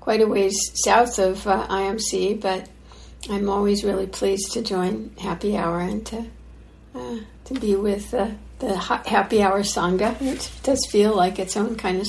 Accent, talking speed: American, 175 wpm